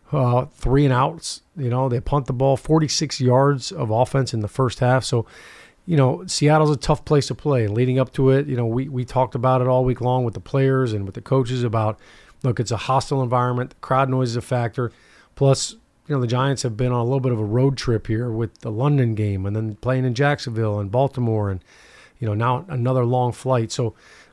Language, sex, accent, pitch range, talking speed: English, male, American, 115-135 Hz, 235 wpm